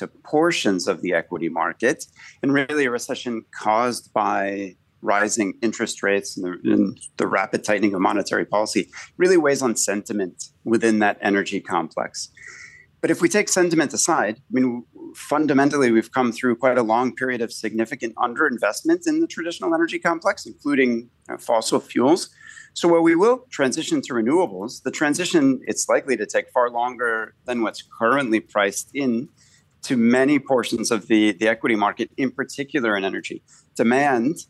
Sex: male